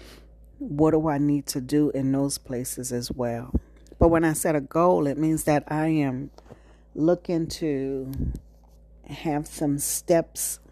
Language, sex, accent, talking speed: English, female, American, 150 wpm